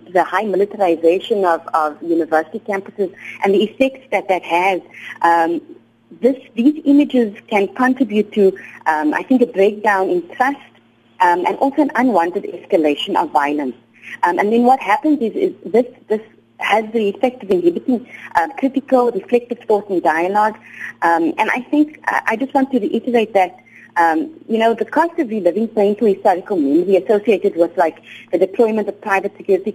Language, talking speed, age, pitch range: English, 165 wpm, 30-49, 190-255 Hz